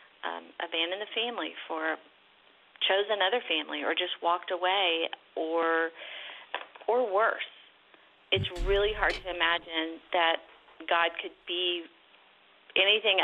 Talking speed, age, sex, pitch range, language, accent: 115 wpm, 40-59, female, 170-200 Hz, English, American